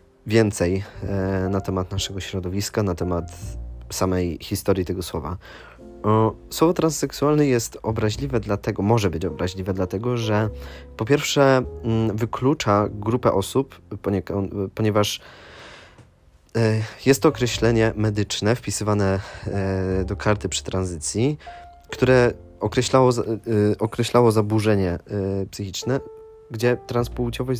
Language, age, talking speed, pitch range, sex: Polish, 20-39, 95 wpm, 90-110 Hz, male